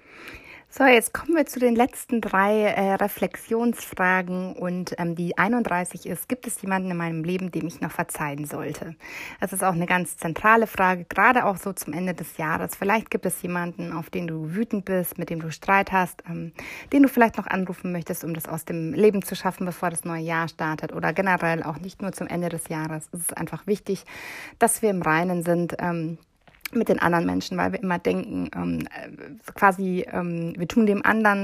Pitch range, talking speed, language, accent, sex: 165-200 Hz, 200 wpm, German, German, female